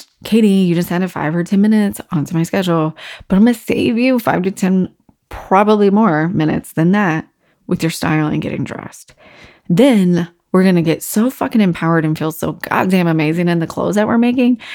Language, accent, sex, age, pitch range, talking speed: English, American, female, 20-39, 165-195 Hz, 210 wpm